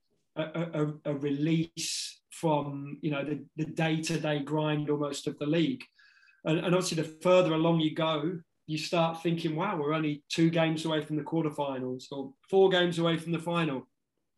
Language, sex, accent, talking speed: English, male, British, 175 wpm